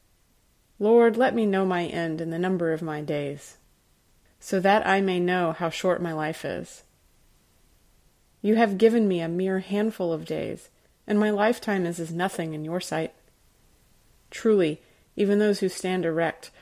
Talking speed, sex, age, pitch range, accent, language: 165 wpm, female, 30-49, 165-205 Hz, American, English